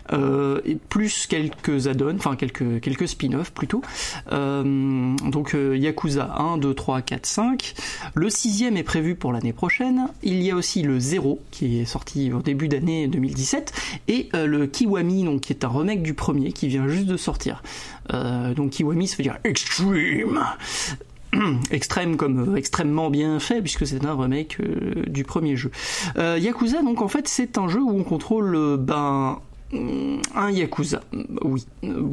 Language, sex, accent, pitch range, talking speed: French, male, French, 140-205 Hz, 175 wpm